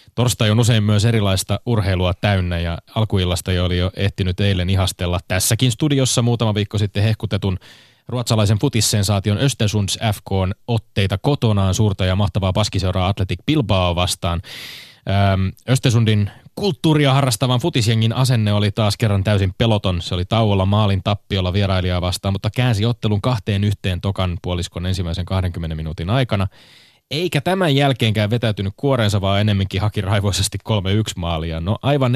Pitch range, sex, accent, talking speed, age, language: 95-115 Hz, male, native, 140 wpm, 20-39, Finnish